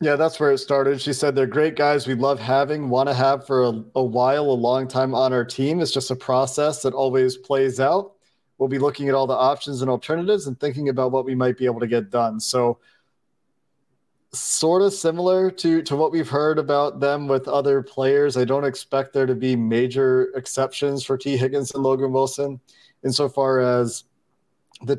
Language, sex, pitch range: English, male, 125-145 Hz